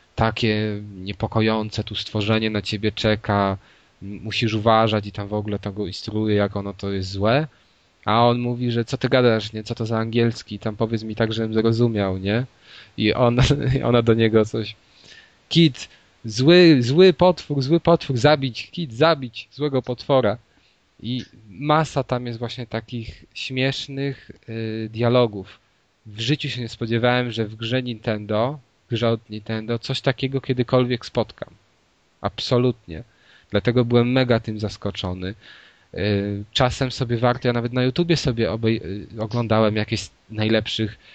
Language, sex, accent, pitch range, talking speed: Polish, male, native, 105-130 Hz, 145 wpm